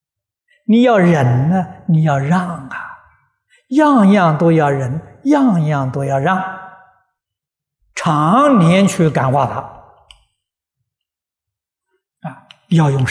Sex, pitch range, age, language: male, 130-200 Hz, 60-79, Chinese